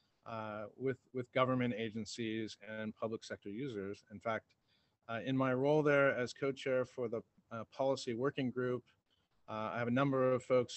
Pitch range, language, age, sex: 110-130 Hz, English, 40-59, male